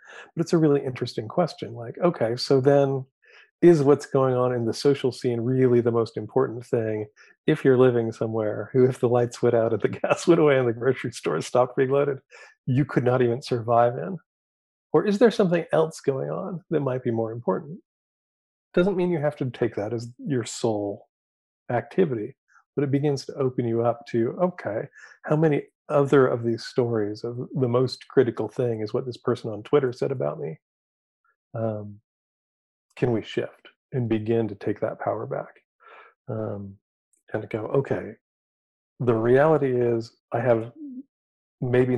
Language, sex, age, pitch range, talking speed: English, male, 40-59, 115-140 Hz, 180 wpm